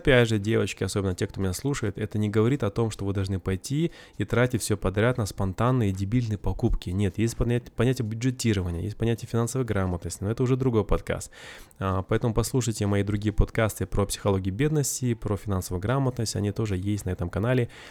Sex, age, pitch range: male, 20-39, 100-120 Hz